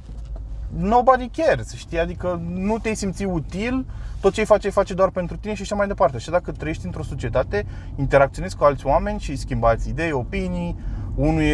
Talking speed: 180 wpm